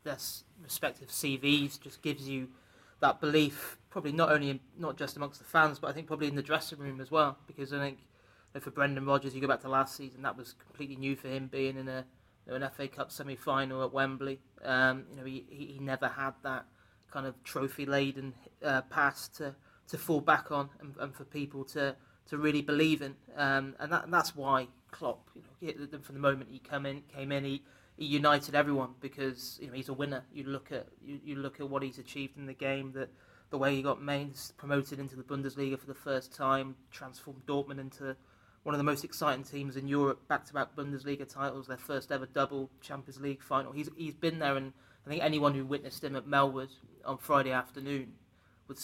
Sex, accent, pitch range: male, British, 135-145 Hz